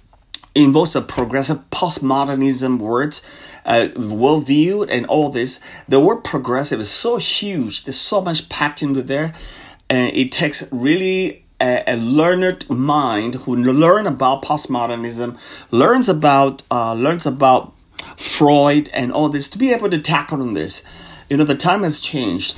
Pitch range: 125-155 Hz